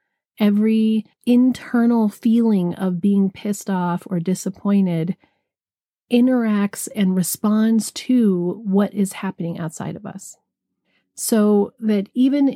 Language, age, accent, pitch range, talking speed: English, 40-59, American, 180-220 Hz, 105 wpm